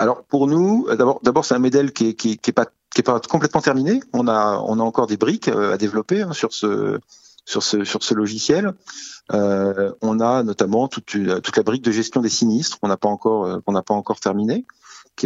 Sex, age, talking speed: male, 40-59, 195 wpm